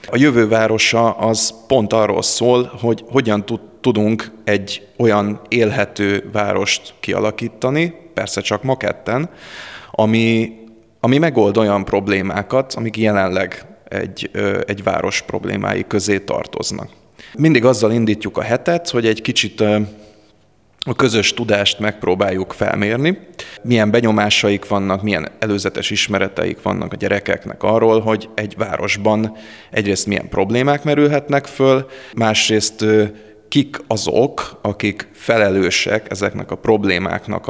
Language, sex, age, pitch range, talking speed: Hungarian, male, 30-49, 105-120 Hz, 110 wpm